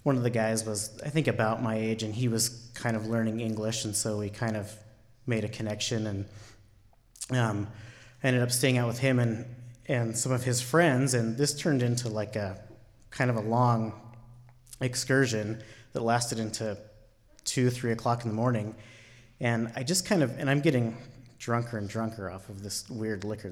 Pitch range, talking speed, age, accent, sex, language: 110-135 Hz, 195 wpm, 30-49, American, male, English